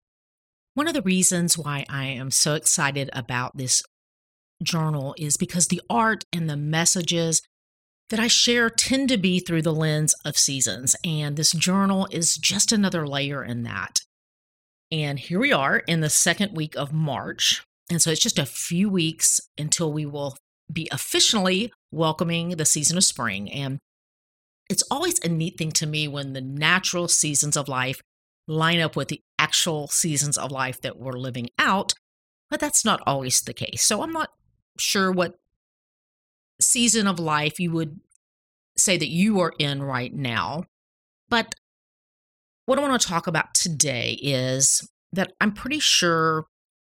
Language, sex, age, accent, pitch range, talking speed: English, female, 40-59, American, 140-190 Hz, 165 wpm